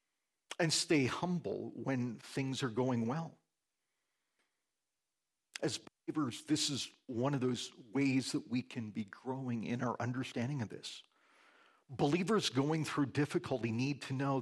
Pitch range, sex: 130-170 Hz, male